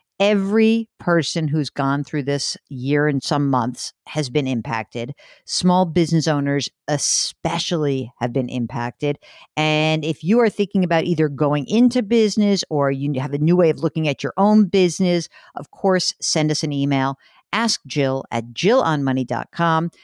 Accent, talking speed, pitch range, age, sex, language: American, 155 wpm, 145-195 Hz, 50-69, female, English